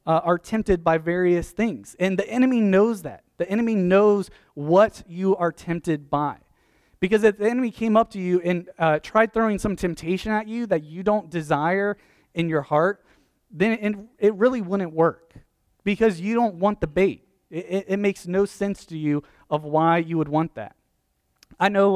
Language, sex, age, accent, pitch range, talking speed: English, male, 30-49, American, 165-205 Hz, 190 wpm